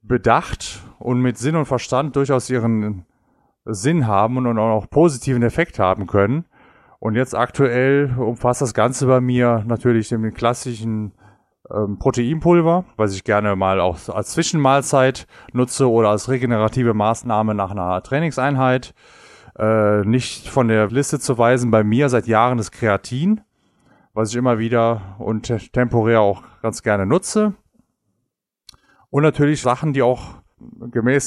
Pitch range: 105-130 Hz